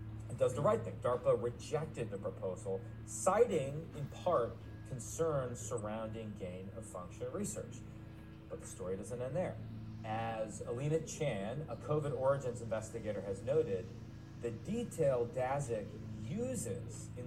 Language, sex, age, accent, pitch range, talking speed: English, male, 30-49, American, 110-145 Hz, 130 wpm